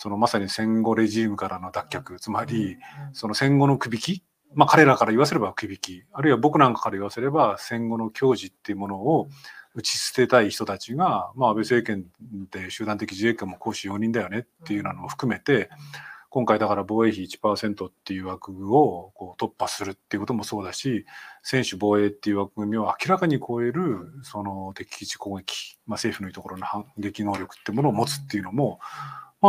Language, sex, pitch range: Japanese, male, 100-140 Hz